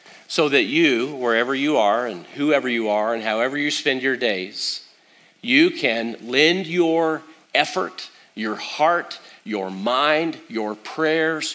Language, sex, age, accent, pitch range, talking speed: English, male, 40-59, American, 110-135 Hz, 140 wpm